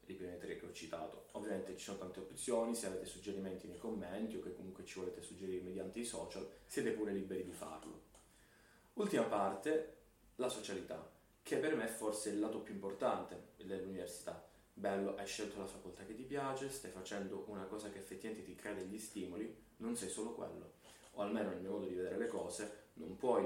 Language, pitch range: Italian, 95-110 Hz